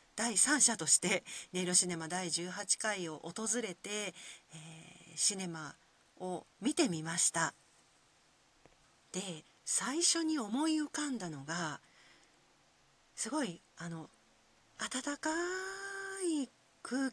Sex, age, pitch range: female, 40-59, 170-275 Hz